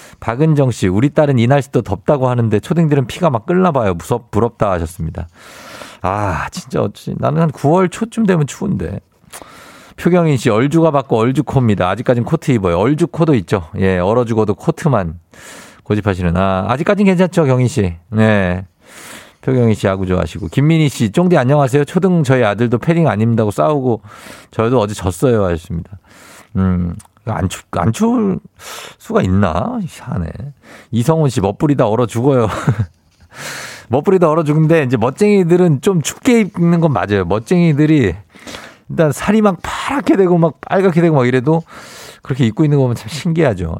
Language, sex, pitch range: Korean, male, 100-150 Hz